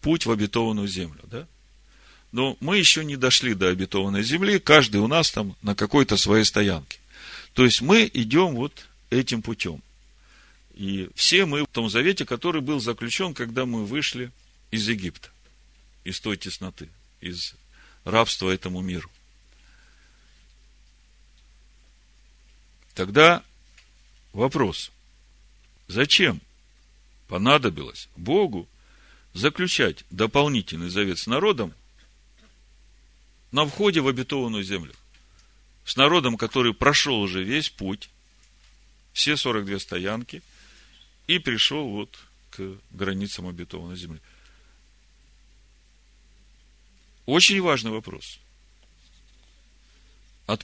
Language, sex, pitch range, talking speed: Russian, male, 95-130 Hz, 100 wpm